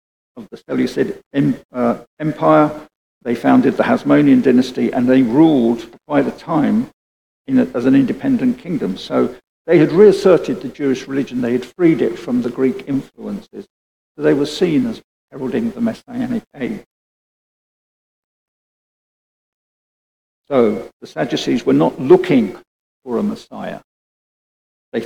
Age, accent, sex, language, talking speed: 50-69, British, male, English, 130 wpm